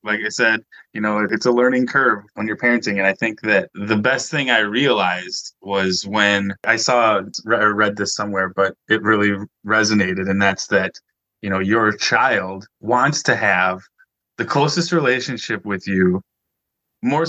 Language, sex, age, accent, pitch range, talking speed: English, male, 20-39, American, 105-125 Hz, 170 wpm